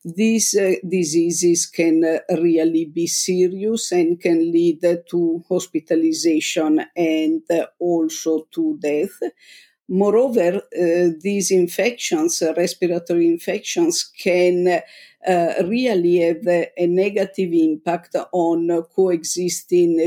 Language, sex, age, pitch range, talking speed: English, female, 50-69, 170-195 Hz, 110 wpm